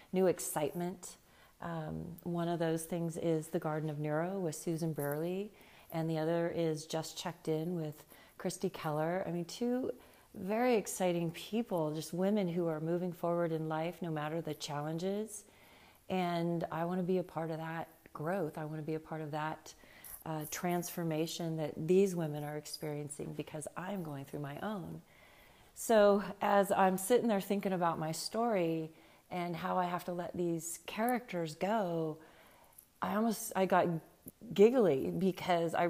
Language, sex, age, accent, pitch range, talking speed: English, female, 40-59, American, 155-180 Hz, 165 wpm